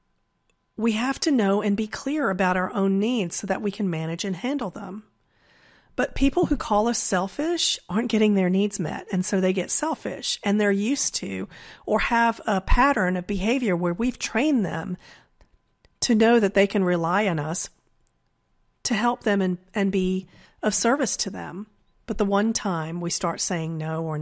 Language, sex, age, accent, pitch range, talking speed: English, female, 40-59, American, 180-230 Hz, 190 wpm